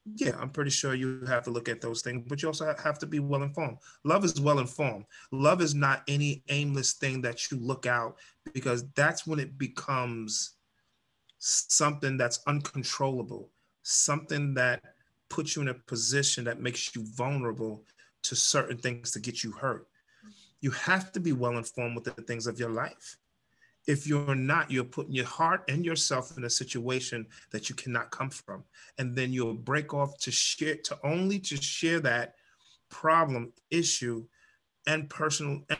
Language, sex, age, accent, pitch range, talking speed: English, male, 30-49, American, 125-150 Hz, 170 wpm